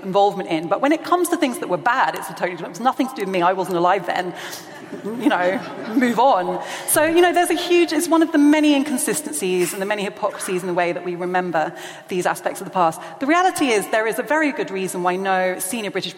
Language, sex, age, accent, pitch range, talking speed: English, female, 30-49, British, 185-245 Hz, 255 wpm